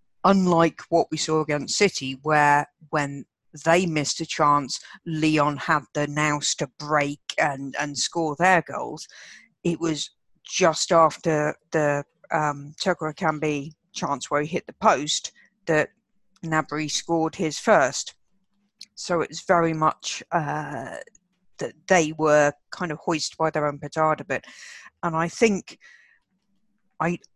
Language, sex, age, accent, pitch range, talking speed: English, female, 50-69, British, 145-170 Hz, 140 wpm